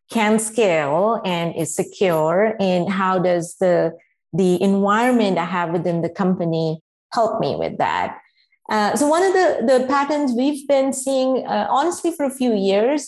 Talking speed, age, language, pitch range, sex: 165 wpm, 30-49, English, 180-230 Hz, female